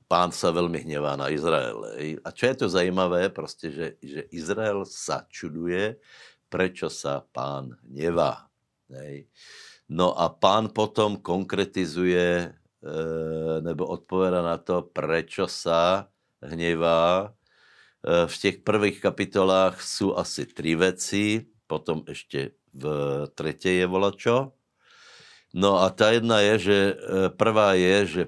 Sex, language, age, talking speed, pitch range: male, Slovak, 60-79, 120 wpm, 80-95 Hz